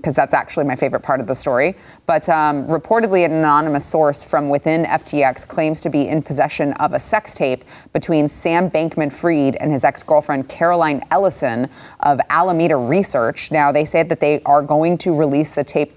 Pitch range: 145-175 Hz